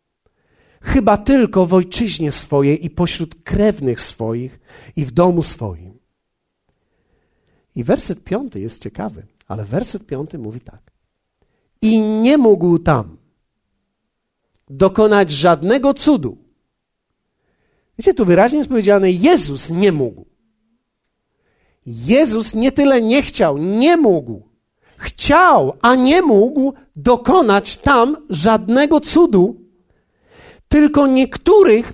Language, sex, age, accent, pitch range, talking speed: Polish, male, 50-69, native, 145-240 Hz, 105 wpm